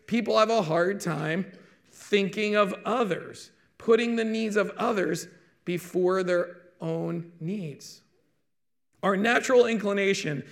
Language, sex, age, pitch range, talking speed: English, male, 40-59, 175-215 Hz, 115 wpm